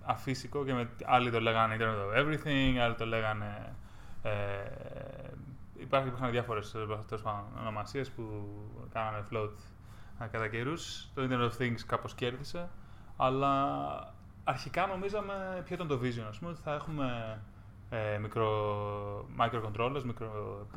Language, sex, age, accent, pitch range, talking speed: Greek, male, 20-39, Spanish, 110-145 Hz, 125 wpm